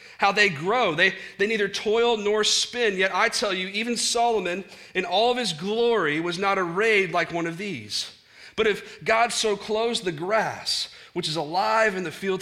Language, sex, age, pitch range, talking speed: English, male, 30-49, 125-195 Hz, 195 wpm